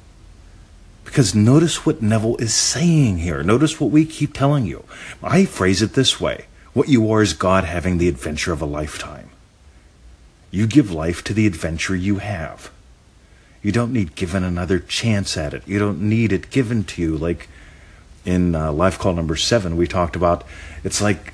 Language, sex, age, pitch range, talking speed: English, male, 40-59, 85-115 Hz, 175 wpm